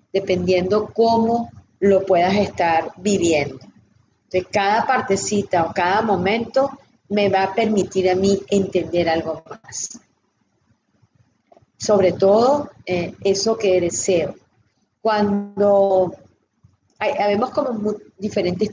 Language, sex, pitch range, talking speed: Spanish, female, 180-215 Hz, 105 wpm